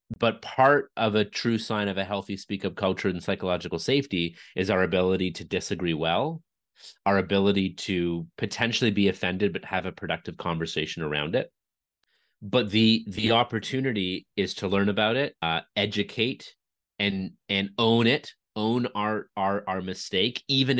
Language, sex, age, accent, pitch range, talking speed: English, male, 30-49, American, 95-115 Hz, 160 wpm